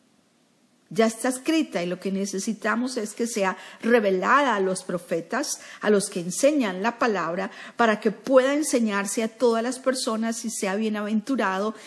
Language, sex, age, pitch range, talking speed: Spanish, female, 50-69, 210-260 Hz, 155 wpm